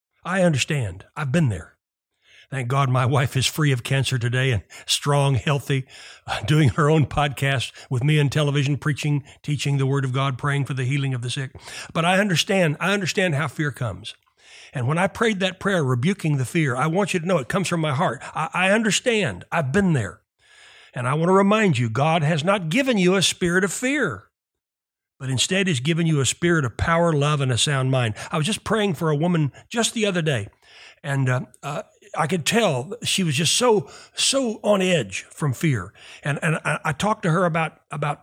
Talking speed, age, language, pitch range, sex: 210 wpm, 60-79, English, 135-190 Hz, male